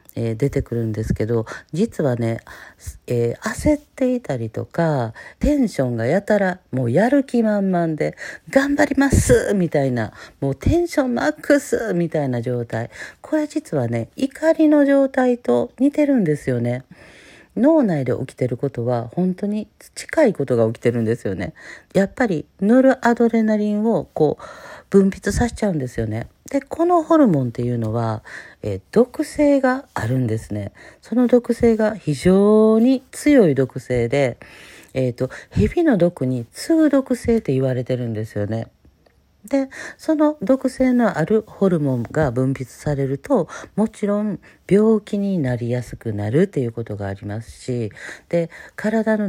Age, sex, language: 40-59, female, Japanese